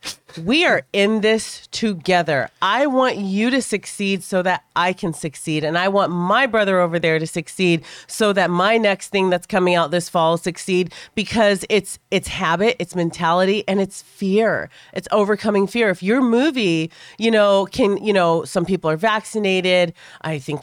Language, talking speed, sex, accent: English, 175 wpm, female, American